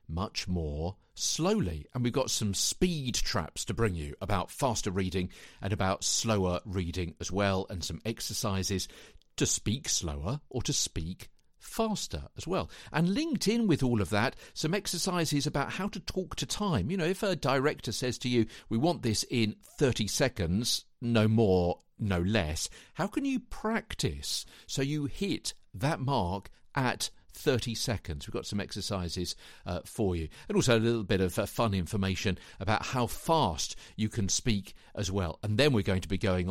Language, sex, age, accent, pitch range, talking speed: English, male, 50-69, British, 95-125 Hz, 180 wpm